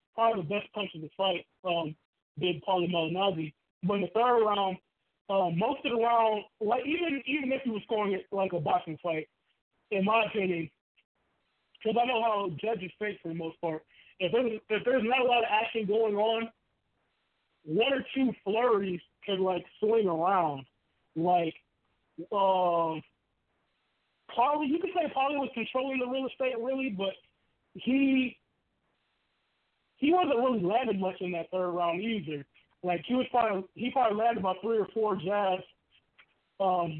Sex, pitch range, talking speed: male, 175-225 Hz, 165 wpm